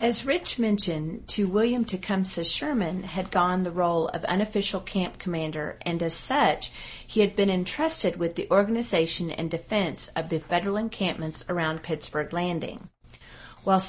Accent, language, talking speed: American, English, 150 wpm